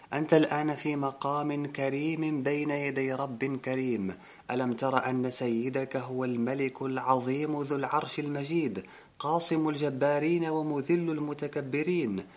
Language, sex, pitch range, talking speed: Arabic, male, 120-135 Hz, 110 wpm